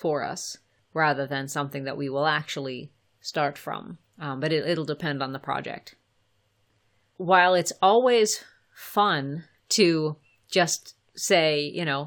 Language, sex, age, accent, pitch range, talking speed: English, female, 30-49, American, 135-165 Hz, 135 wpm